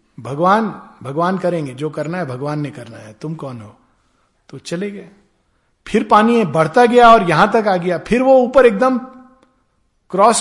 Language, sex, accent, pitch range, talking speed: Hindi, male, native, 160-215 Hz, 175 wpm